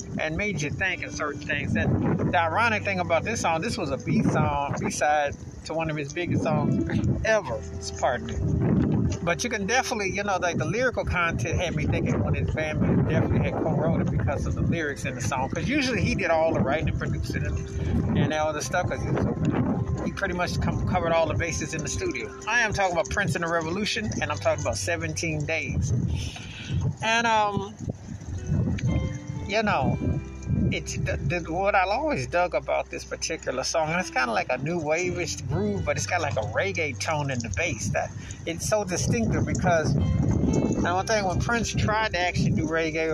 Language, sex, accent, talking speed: English, male, American, 210 wpm